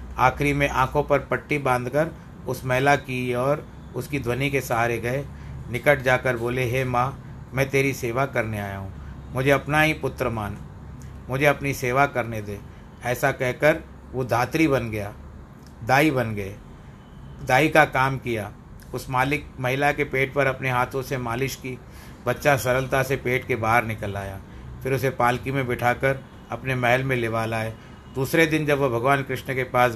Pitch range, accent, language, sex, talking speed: 115-140 Hz, native, Hindi, male, 175 wpm